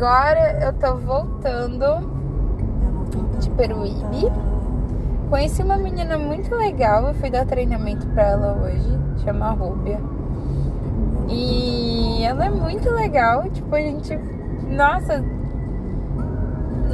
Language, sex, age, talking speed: Portuguese, female, 10-29, 105 wpm